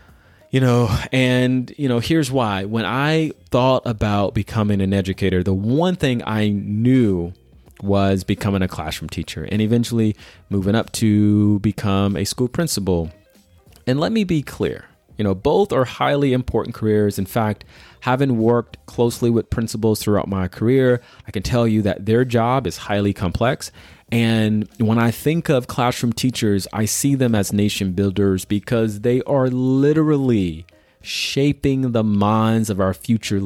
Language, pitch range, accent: English, 100-125 Hz, American